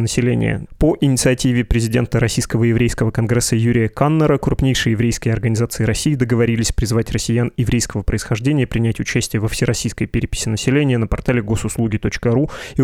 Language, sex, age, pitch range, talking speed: Russian, male, 20-39, 115-130 Hz, 130 wpm